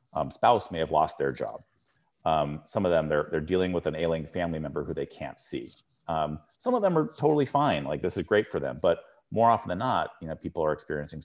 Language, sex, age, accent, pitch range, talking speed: English, male, 30-49, American, 80-110 Hz, 245 wpm